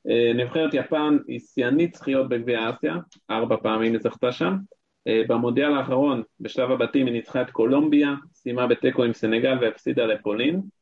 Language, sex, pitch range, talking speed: Hebrew, male, 115-150 Hz, 145 wpm